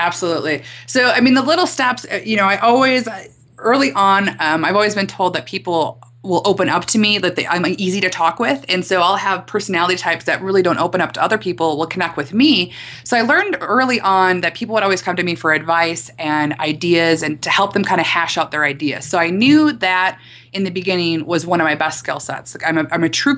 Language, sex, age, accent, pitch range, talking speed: English, female, 20-39, American, 165-210 Hz, 245 wpm